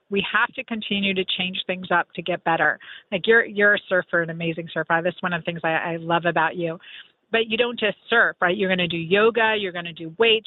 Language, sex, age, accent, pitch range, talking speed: English, female, 40-59, American, 175-210 Hz, 260 wpm